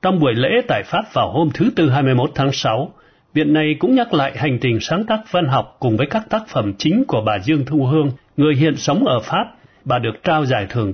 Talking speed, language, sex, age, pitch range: 240 wpm, Vietnamese, male, 60-79, 120-165 Hz